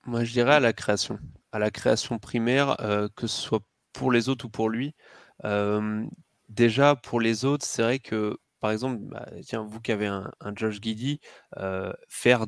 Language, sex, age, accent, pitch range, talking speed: French, male, 20-39, French, 105-120 Hz, 195 wpm